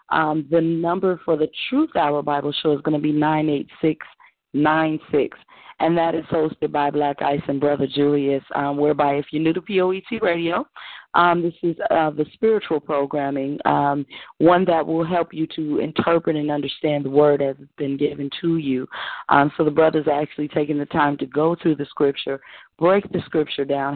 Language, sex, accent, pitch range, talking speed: English, female, American, 150-185 Hz, 190 wpm